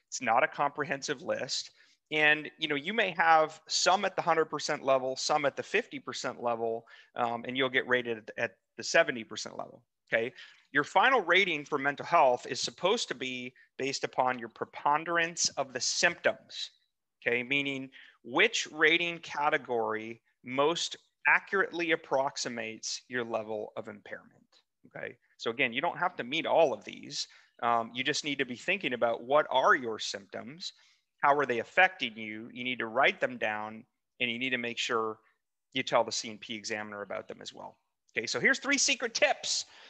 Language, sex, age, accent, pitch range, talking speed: English, male, 30-49, American, 120-155 Hz, 175 wpm